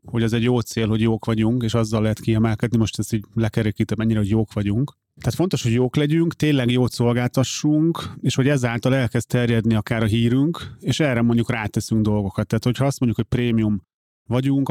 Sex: male